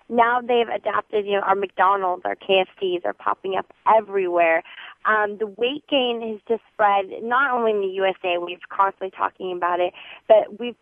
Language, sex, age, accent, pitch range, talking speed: English, female, 20-39, American, 195-250 Hz, 185 wpm